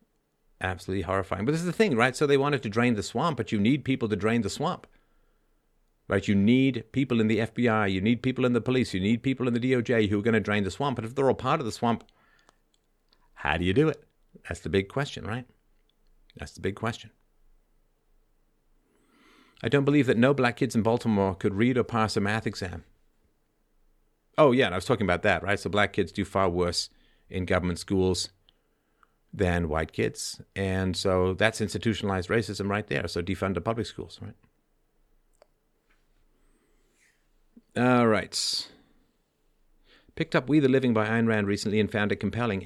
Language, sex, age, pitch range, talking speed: English, male, 50-69, 95-120 Hz, 190 wpm